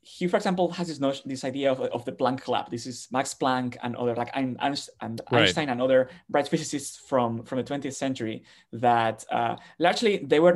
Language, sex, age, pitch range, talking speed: English, male, 20-39, 125-150 Hz, 200 wpm